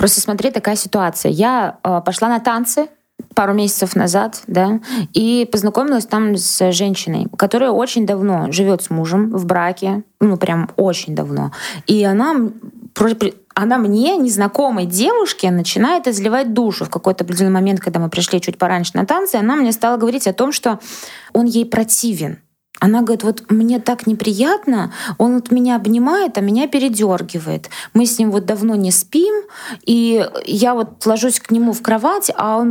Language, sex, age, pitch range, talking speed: Russian, female, 20-39, 195-255 Hz, 165 wpm